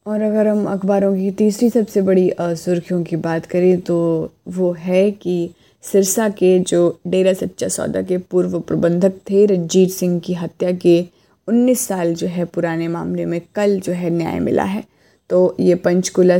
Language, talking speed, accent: Hindi, 170 wpm, native